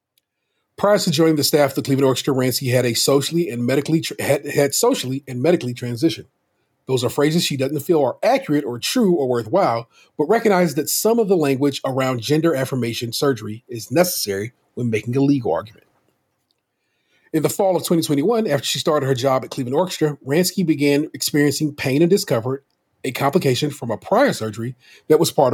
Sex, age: male, 40-59